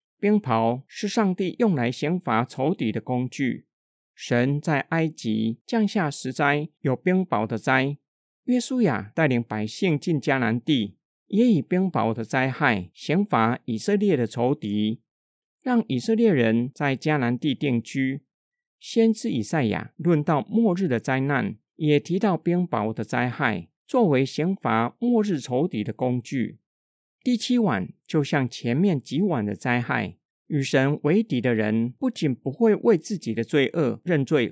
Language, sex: Chinese, male